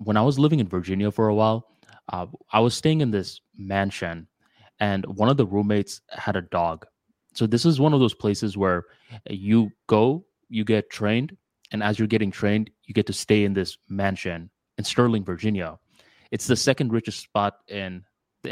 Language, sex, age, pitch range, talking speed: English, male, 20-39, 105-125 Hz, 190 wpm